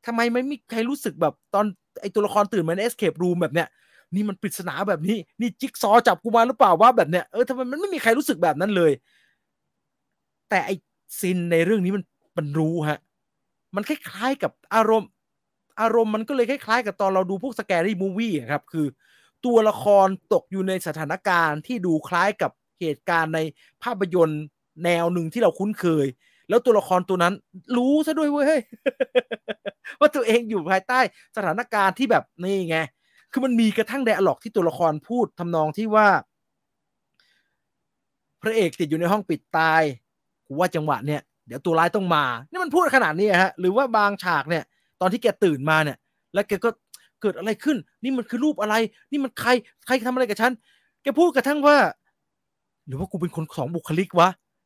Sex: male